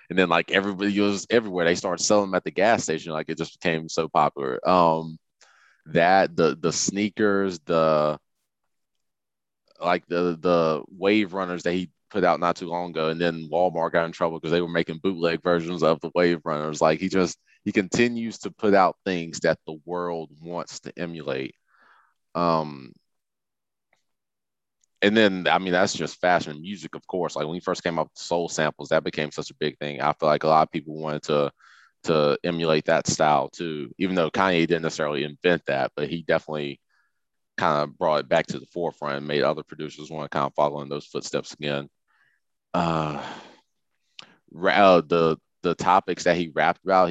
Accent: American